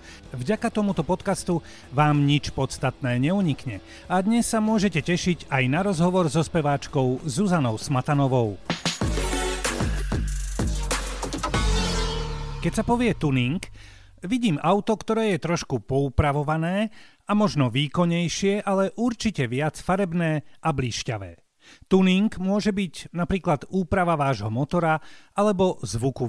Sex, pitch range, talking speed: male, 135-195 Hz, 105 wpm